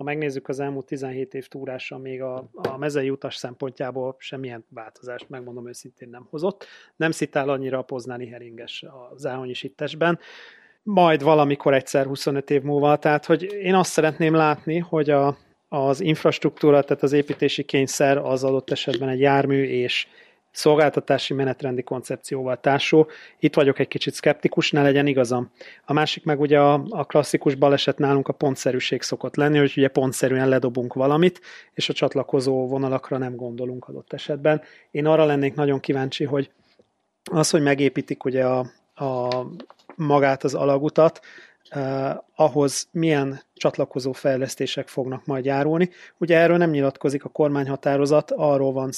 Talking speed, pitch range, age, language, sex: 150 wpm, 130-150 Hz, 30-49, Hungarian, male